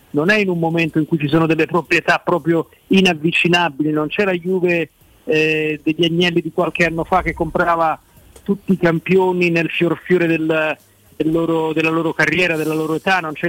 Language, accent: Italian, native